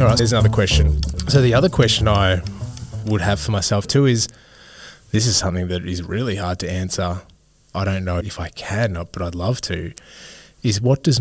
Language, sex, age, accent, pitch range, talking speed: English, male, 20-39, Australian, 95-110 Hz, 205 wpm